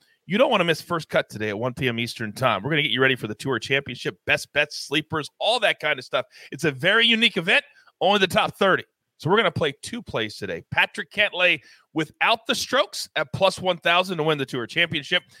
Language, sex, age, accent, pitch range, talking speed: English, male, 30-49, American, 150-215 Hz, 240 wpm